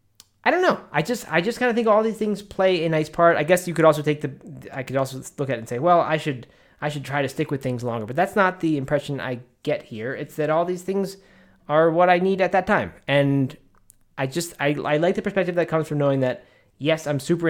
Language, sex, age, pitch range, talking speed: English, male, 20-39, 130-180 Hz, 270 wpm